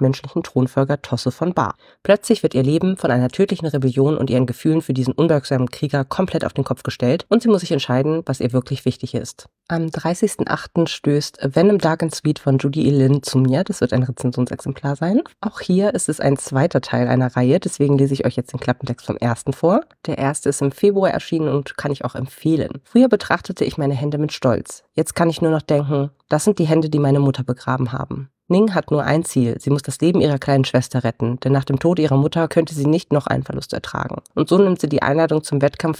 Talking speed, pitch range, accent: 230 wpm, 135-165 Hz, German